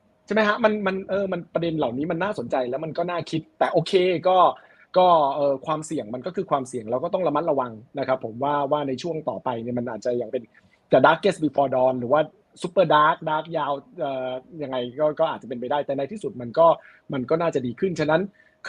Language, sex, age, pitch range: Thai, male, 20-39, 130-175 Hz